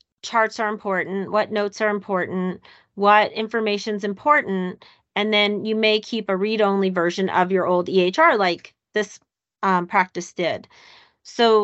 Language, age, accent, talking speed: English, 30-49, American, 150 wpm